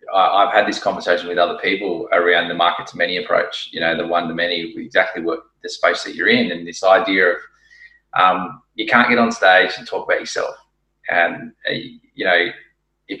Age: 20-39